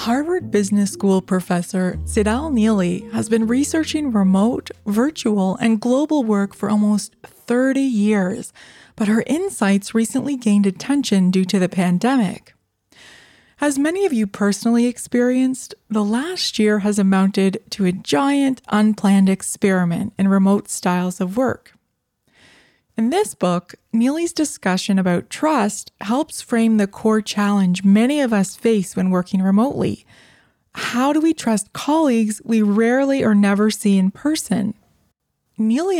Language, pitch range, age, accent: English, 190-255 Hz, 20-39, American